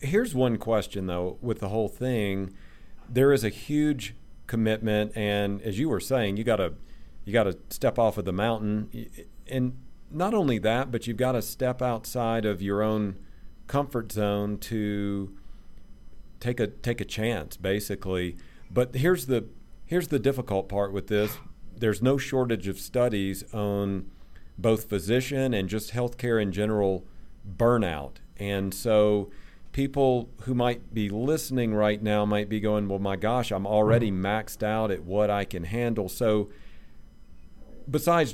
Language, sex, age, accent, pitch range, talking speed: English, male, 40-59, American, 100-120 Hz, 155 wpm